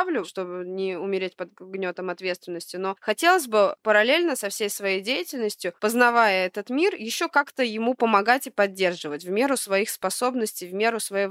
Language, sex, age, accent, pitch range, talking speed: Russian, female, 20-39, native, 190-240 Hz, 160 wpm